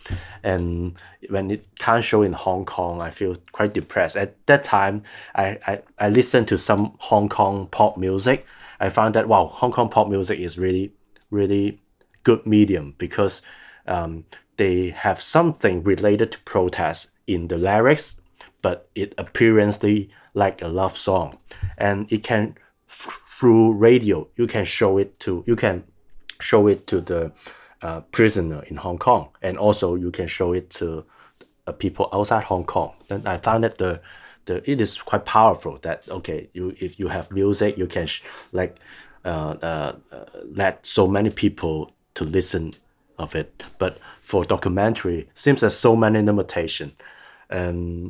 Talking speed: 160 wpm